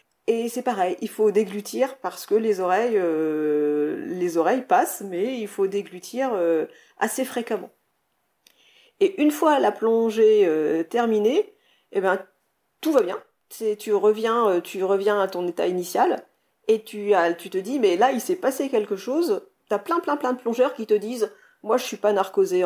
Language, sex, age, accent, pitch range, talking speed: French, female, 40-59, French, 190-260 Hz, 185 wpm